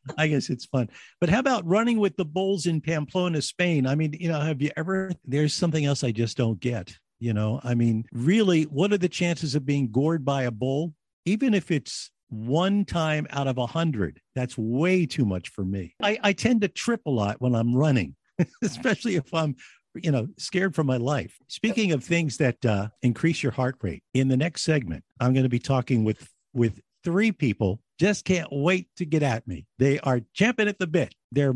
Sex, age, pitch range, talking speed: male, 50-69, 120-175 Hz, 215 wpm